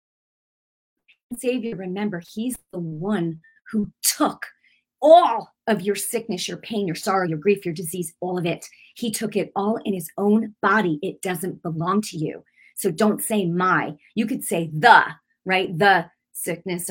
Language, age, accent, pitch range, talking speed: English, 30-49, American, 180-230 Hz, 160 wpm